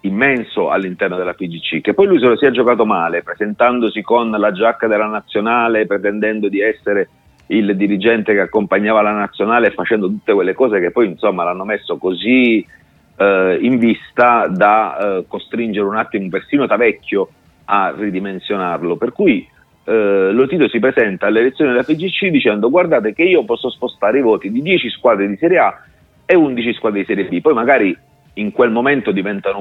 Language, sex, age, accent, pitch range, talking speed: Italian, male, 40-59, native, 100-150 Hz, 170 wpm